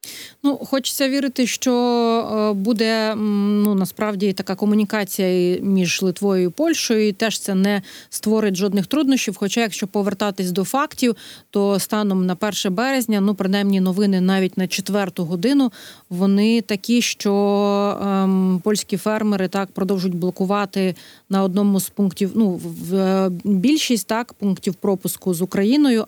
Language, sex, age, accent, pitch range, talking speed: Ukrainian, female, 30-49, native, 190-220 Hz, 135 wpm